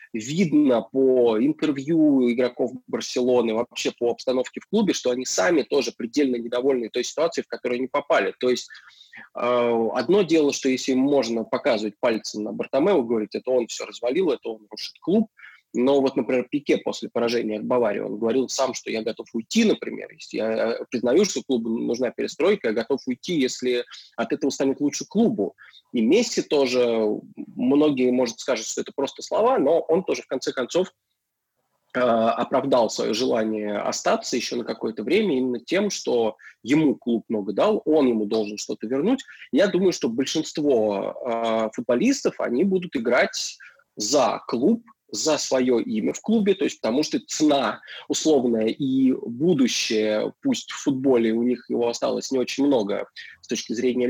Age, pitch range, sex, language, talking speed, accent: 20-39, 115-155 Hz, male, Russian, 165 wpm, native